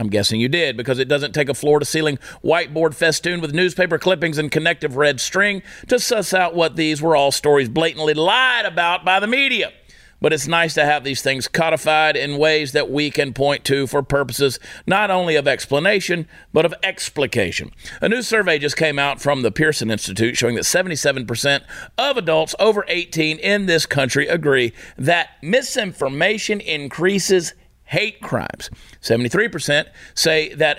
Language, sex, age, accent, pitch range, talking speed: English, male, 50-69, American, 145-180 Hz, 170 wpm